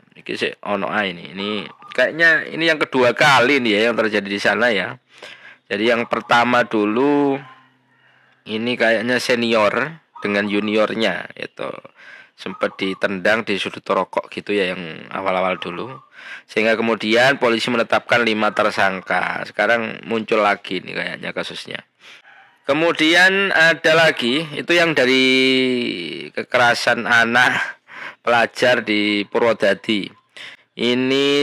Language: Indonesian